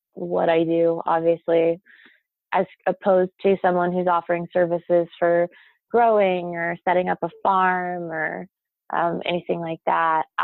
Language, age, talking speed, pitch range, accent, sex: English, 20-39, 130 wpm, 175-205 Hz, American, female